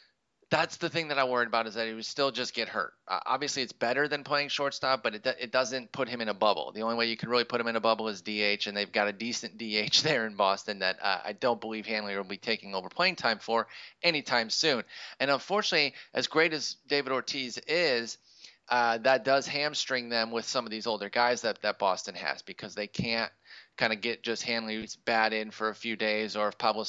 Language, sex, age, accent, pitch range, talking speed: English, male, 30-49, American, 110-140 Hz, 240 wpm